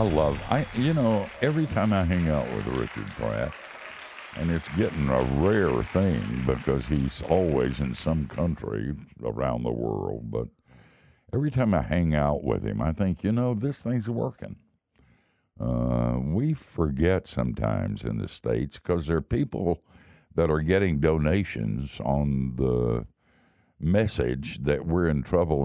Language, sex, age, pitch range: English, male, 60-79, 75-100 Hz